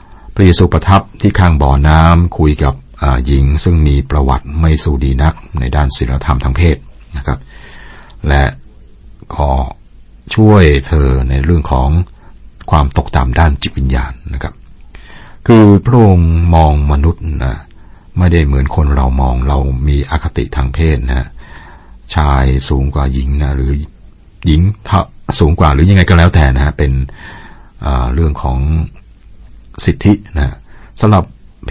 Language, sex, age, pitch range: Thai, male, 60-79, 70-90 Hz